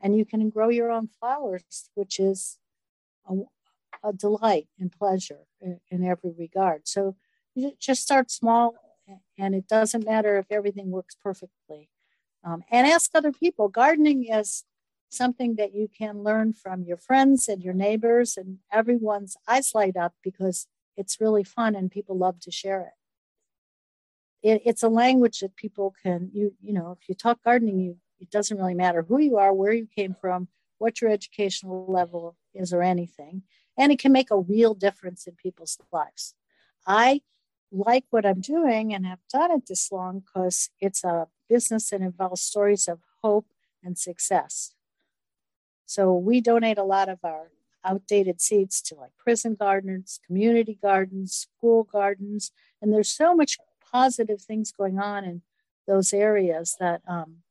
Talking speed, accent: 165 wpm, American